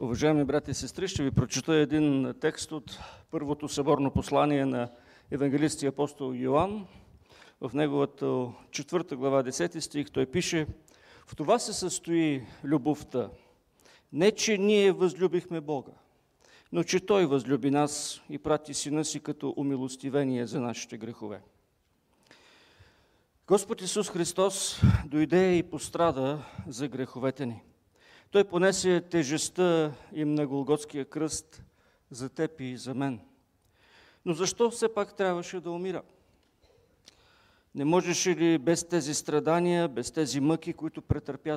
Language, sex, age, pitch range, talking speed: English, male, 50-69, 130-165 Hz, 130 wpm